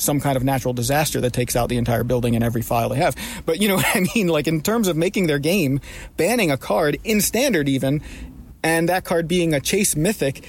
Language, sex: English, male